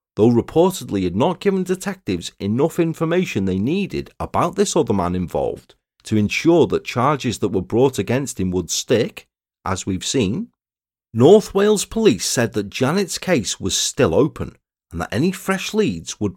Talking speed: 165 wpm